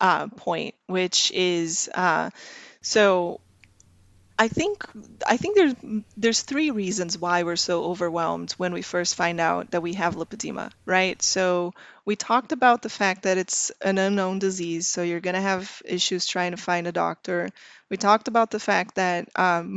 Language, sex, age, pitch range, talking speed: English, female, 20-39, 175-205 Hz, 170 wpm